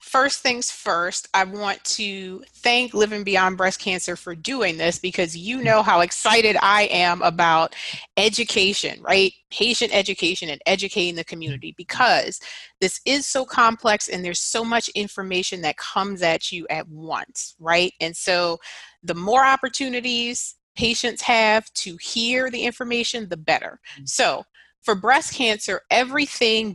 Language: English